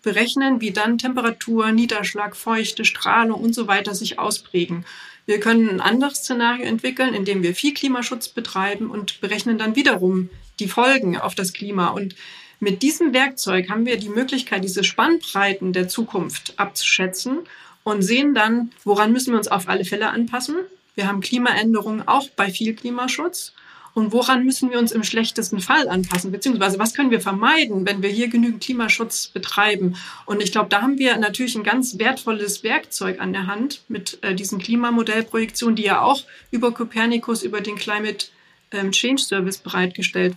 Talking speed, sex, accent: 165 wpm, female, German